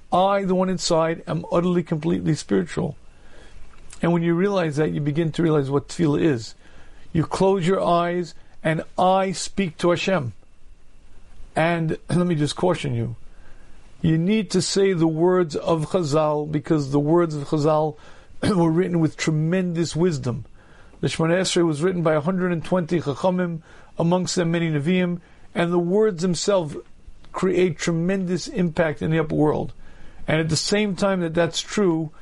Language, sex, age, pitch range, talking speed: English, male, 50-69, 155-180 Hz, 155 wpm